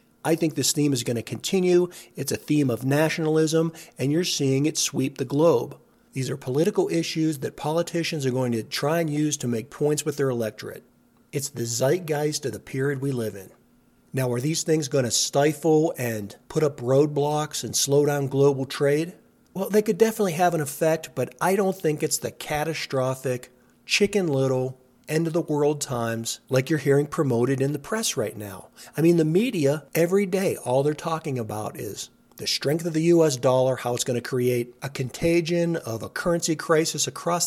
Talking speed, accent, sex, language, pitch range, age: 195 wpm, American, male, English, 130-165 Hz, 40-59